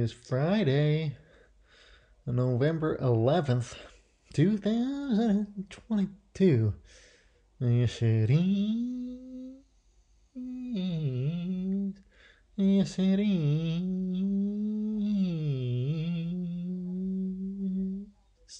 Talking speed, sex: 30 wpm, male